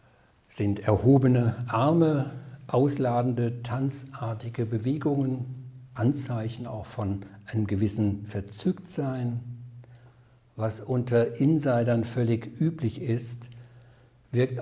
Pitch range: 110-130 Hz